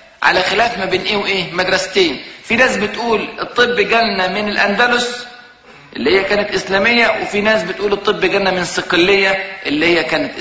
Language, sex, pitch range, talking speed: Arabic, male, 170-225 Hz, 155 wpm